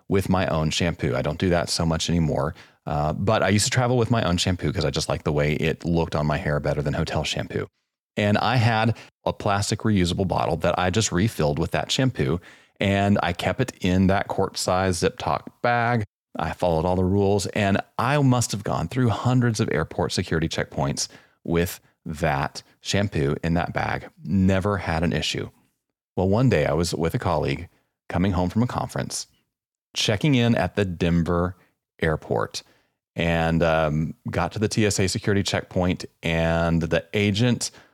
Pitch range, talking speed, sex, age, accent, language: 80-110 Hz, 185 wpm, male, 30-49, American, English